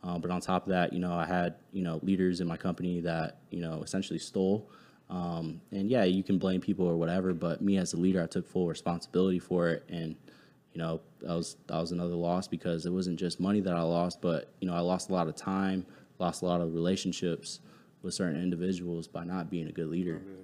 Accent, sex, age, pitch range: American, male, 20-39, 85-95 Hz